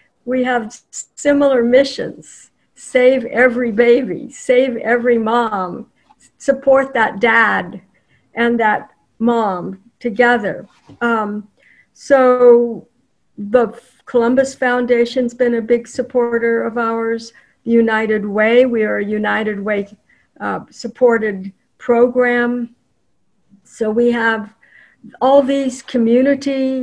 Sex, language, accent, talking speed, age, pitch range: female, English, American, 100 wpm, 60-79, 220-250 Hz